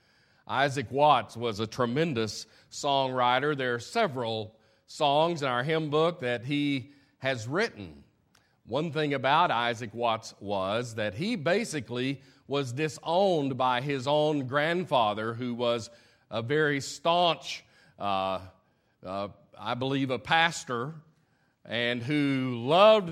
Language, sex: English, male